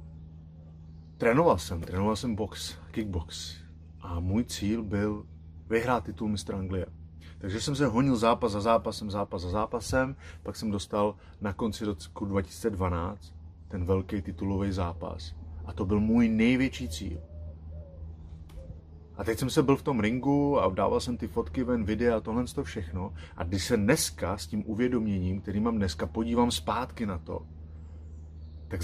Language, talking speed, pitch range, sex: Czech, 155 wpm, 85-110 Hz, male